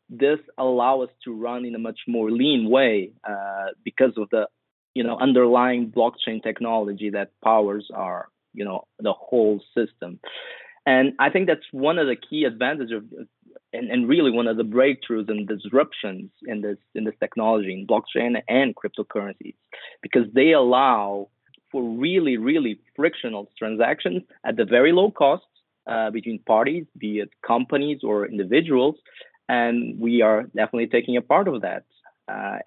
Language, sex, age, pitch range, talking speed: English, male, 20-39, 110-135 Hz, 160 wpm